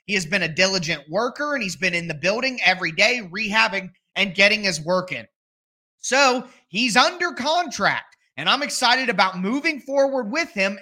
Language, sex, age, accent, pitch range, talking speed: English, male, 30-49, American, 190-270 Hz, 175 wpm